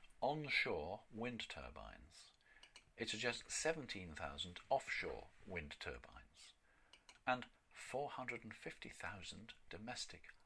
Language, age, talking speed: English, 50-69, 70 wpm